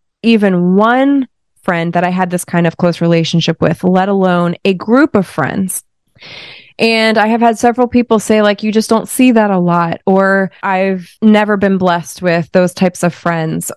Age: 20-39